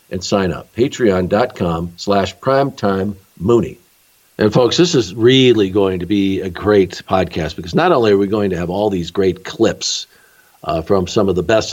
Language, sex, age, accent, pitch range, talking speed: English, male, 50-69, American, 90-115 Hz, 180 wpm